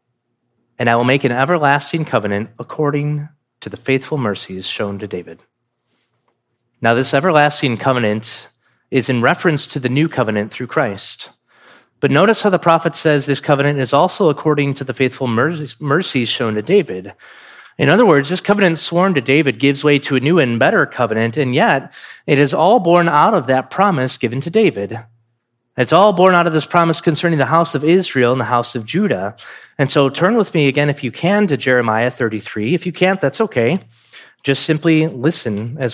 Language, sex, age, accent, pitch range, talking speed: English, male, 30-49, American, 120-155 Hz, 190 wpm